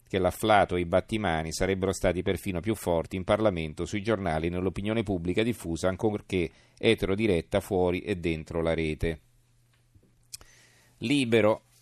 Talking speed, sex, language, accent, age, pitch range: 130 wpm, male, Italian, native, 40-59, 95-120 Hz